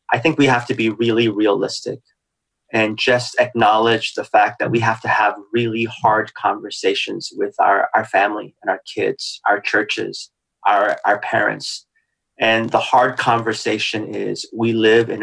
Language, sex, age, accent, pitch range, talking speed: English, male, 30-49, American, 110-130 Hz, 160 wpm